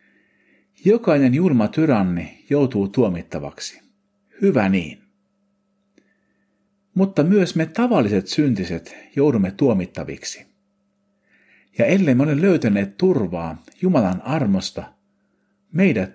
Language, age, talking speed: Finnish, 50-69, 85 wpm